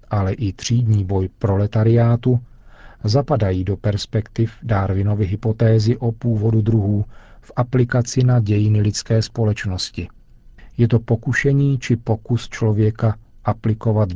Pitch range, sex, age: 105-120 Hz, male, 40-59